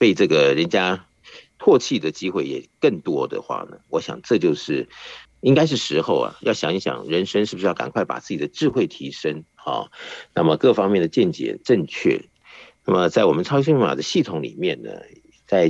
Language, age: Chinese, 50-69